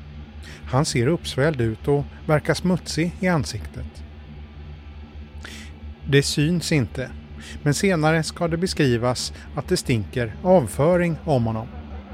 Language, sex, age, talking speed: English, male, 30-49, 115 wpm